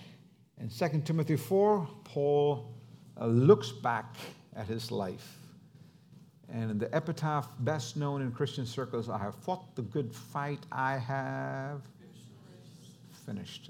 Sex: male